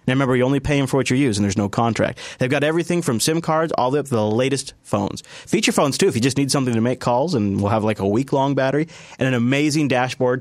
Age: 30-49